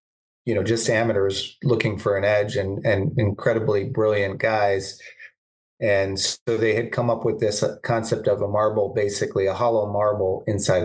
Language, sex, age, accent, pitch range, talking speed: English, male, 30-49, American, 95-115 Hz, 165 wpm